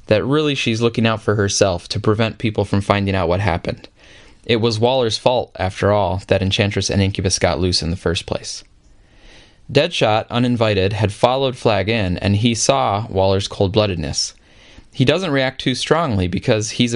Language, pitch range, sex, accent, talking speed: English, 100-120 Hz, male, American, 175 wpm